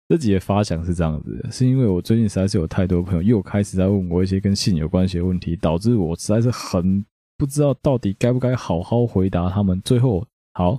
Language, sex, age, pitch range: Chinese, male, 20-39, 85-100 Hz